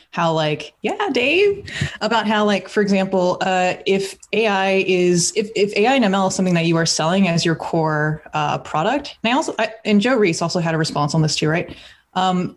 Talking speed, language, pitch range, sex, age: 215 wpm, English, 165-210 Hz, female, 20-39